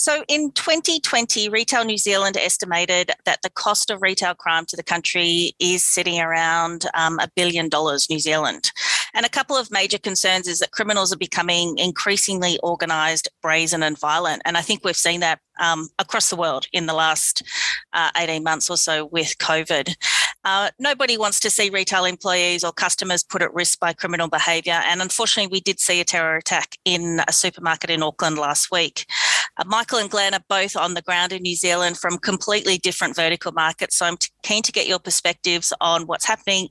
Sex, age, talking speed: female, 30-49, 195 wpm